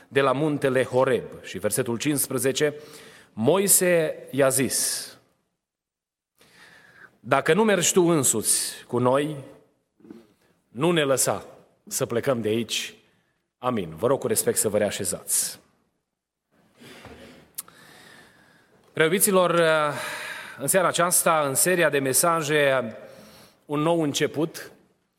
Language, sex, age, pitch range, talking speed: Romanian, male, 30-49, 135-175 Hz, 100 wpm